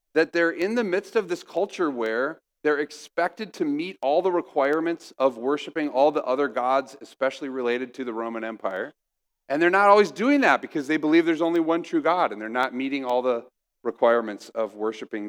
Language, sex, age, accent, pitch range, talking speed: English, male, 40-59, American, 125-190 Hz, 200 wpm